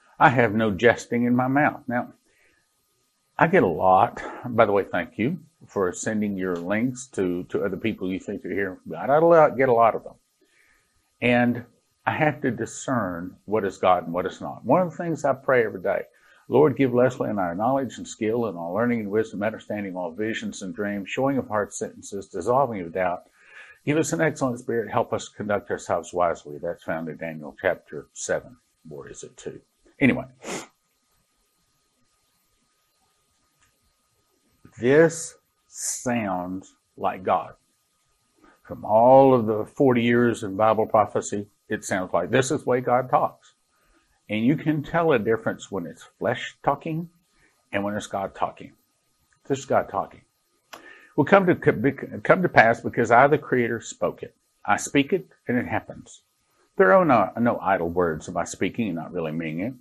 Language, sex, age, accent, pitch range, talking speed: English, male, 50-69, American, 105-145 Hz, 175 wpm